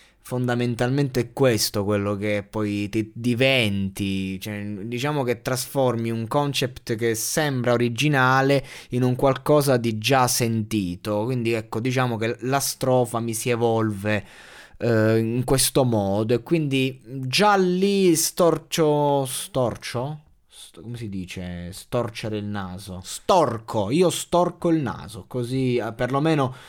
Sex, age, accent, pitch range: male, 20-39, native, 110-140 Hz